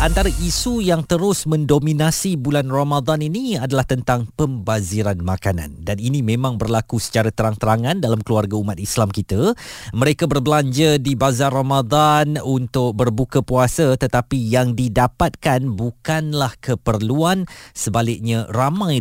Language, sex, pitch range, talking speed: Malay, male, 115-160 Hz, 120 wpm